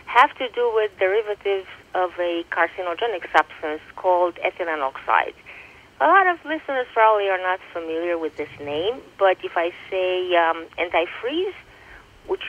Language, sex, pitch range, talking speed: English, female, 170-220 Hz, 145 wpm